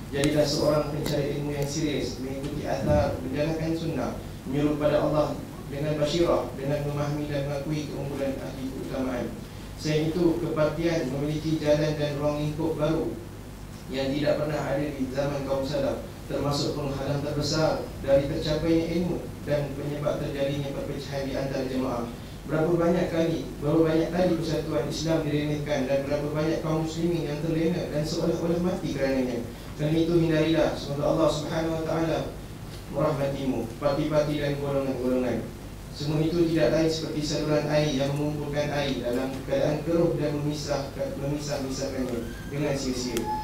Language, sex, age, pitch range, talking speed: Malay, male, 20-39, 135-155 Hz, 140 wpm